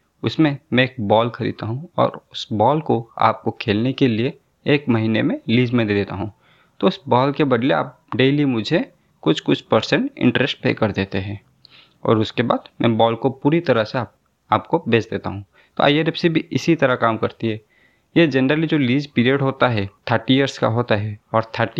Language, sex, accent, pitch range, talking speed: Hindi, male, native, 110-145 Hz, 205 wpm